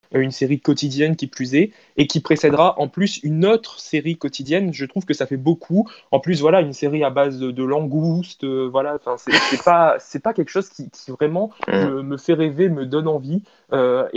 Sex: male